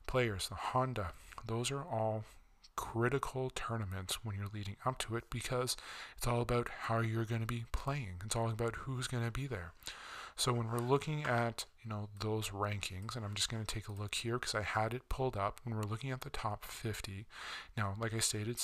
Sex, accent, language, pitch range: male, American, English, 105-120 Hz